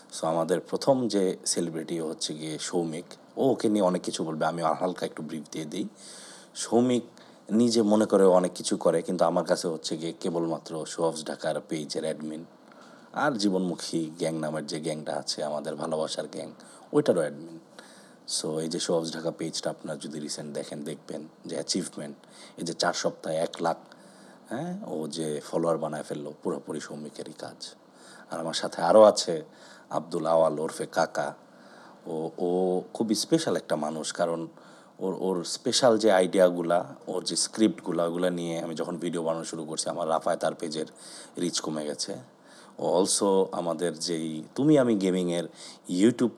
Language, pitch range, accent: Bengali, 80-95 Hz, native